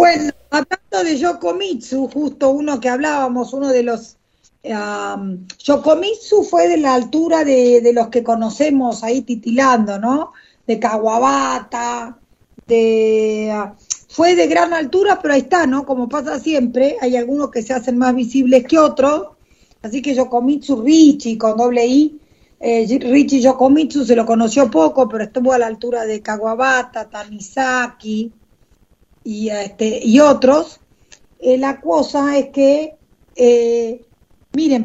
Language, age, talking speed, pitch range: Spanish, 40-59, 140 wpm, 230-280 Hz